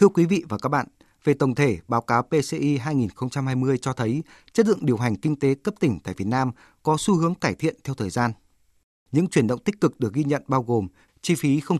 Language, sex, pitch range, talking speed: Vietnamese, male, 110-155 Hz, 240 wpm